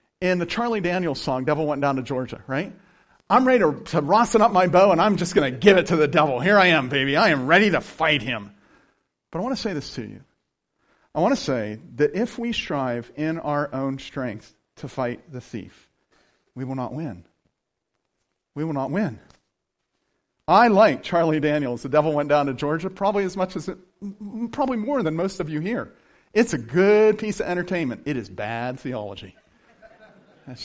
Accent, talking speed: American, 205 wpm